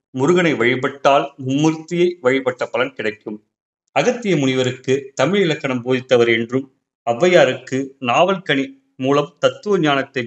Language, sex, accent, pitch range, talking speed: Tamil, male, native, 125-150 Hz, 105 wpm